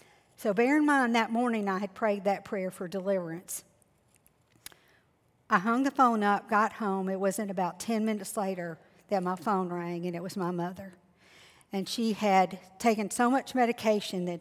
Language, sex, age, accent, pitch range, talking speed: English, female, 50-69, American, 190-235 Hz, 180 wpm